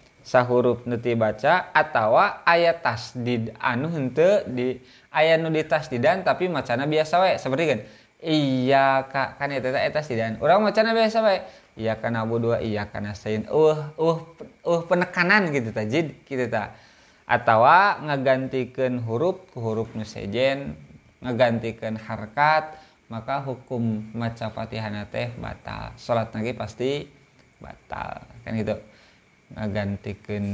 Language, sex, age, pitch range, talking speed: Indonesian, male, 20-39, 110-140 Hz, 130 wpm